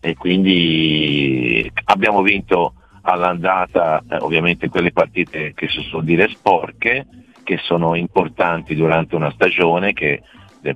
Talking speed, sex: 125 wpm, male